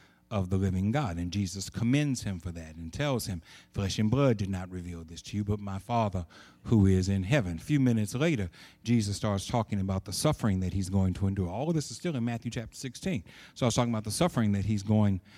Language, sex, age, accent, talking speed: English, male, 60-79, American, 245 wpm